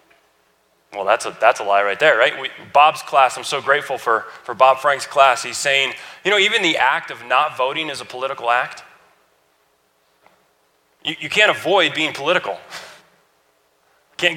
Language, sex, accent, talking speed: English, male, American, 170 wpm